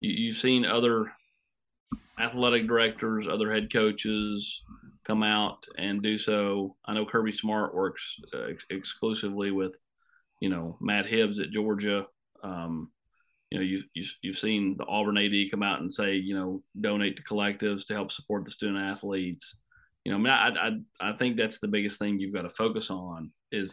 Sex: male